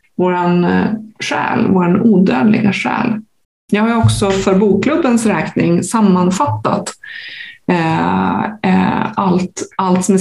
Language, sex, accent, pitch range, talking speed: Swedish, female, native, 180-220 Hz, 105 wpm